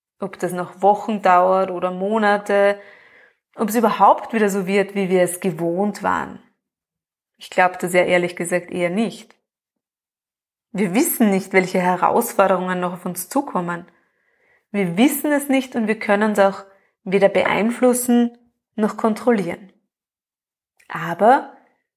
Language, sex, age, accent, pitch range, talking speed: German, female, 20-39, German, 190-245 Hz, 135 wpm